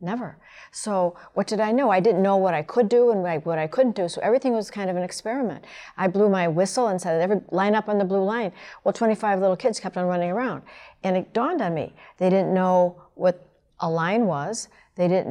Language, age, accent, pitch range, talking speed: English, 60-79, American, 170-205 Hz, 230 wpm